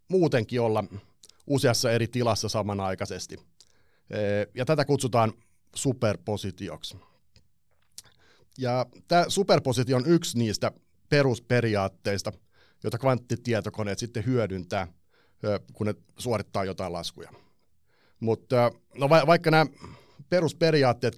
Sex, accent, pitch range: male, native, 105-135 Hz